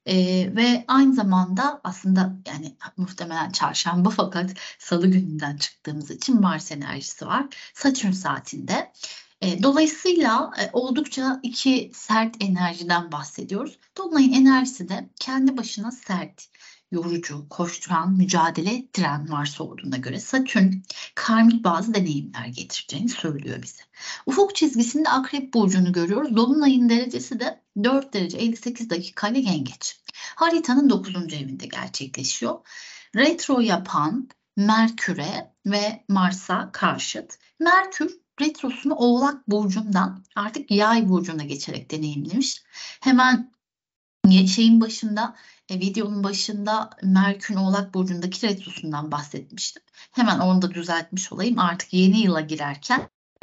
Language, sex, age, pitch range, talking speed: Turkish, female, 60-79, 175-245 Hz, 110 wpm